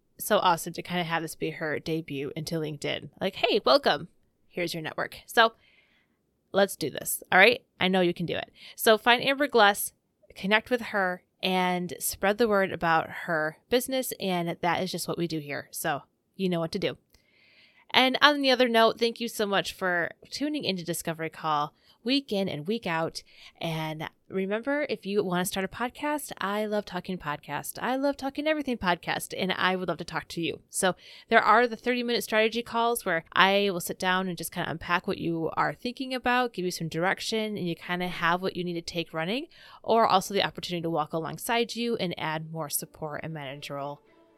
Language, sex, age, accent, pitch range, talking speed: English, female, 20-39, American, 165-235 Hz, 210 wpm